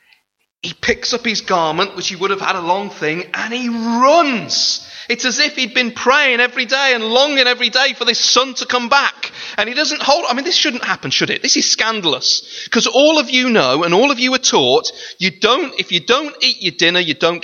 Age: 30-49